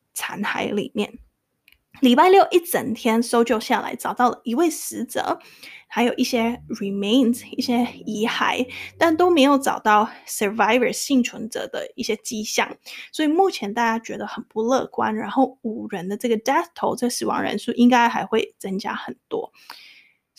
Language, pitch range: Chinese, 220-265 Hz